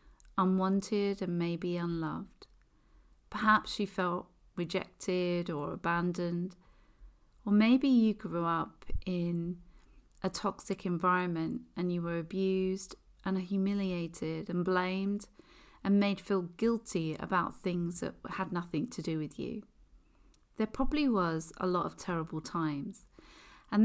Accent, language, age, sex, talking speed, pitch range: British, English, 40-59, female, 125 wpm, 175-210 Hz